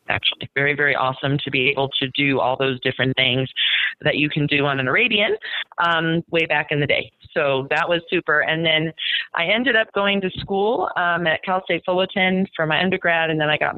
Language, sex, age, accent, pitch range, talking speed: English, female, 30-49, American, 145-175 Hz, 220 wpm